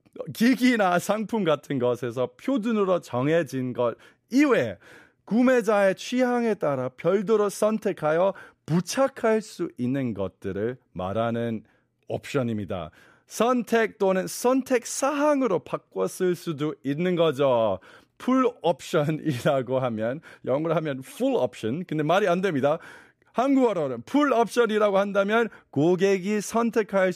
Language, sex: Korean, male